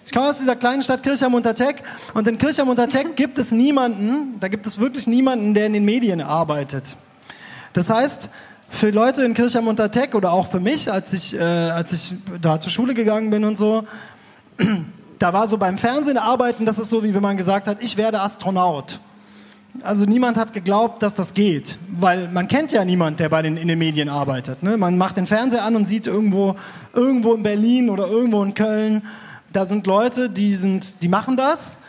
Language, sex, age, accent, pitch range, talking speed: German, male, 20-39, German, 185-235 Hz, 200 wpm